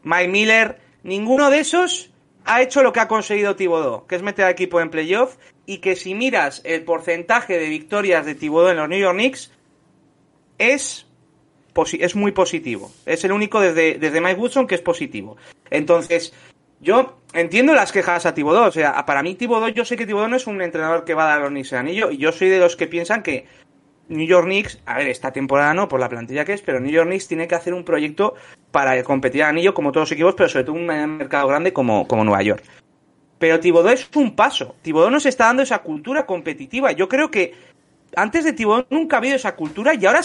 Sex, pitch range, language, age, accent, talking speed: male, 160-250 Hz, Spanish, 30-49, Spanish, 220 wpm